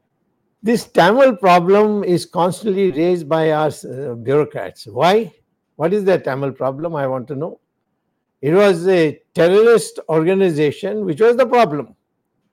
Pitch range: 165-210 Hz